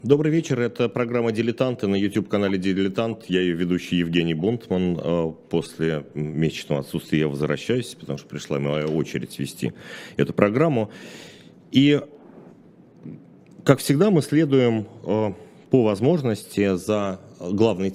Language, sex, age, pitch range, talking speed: Russian, male, 40-59, 95-135 Hz, 115 wpm